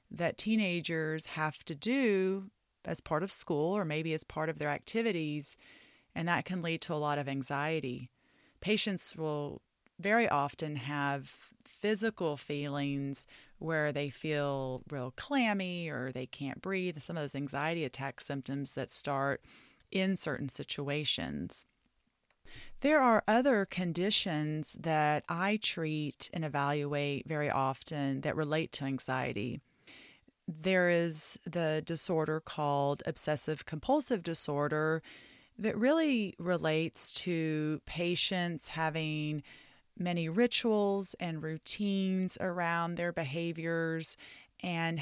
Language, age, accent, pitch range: English, 30-49, American, 145-185 Hz